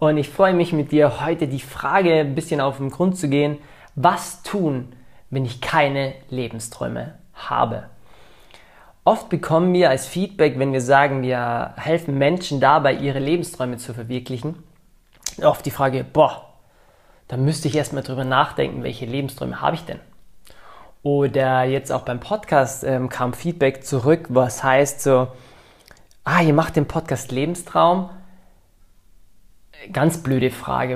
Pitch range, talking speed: 130-165 Hz, 145 wpm